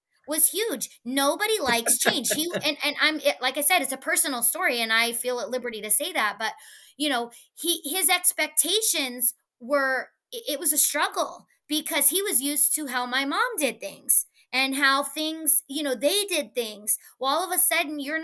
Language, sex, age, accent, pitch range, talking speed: English, female, 20-39, American, 235-310 Hz, 195 wpm